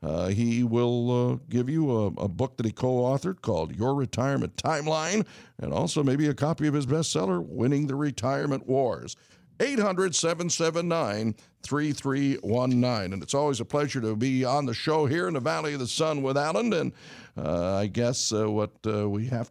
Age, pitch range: 60-79, 120-150 Hz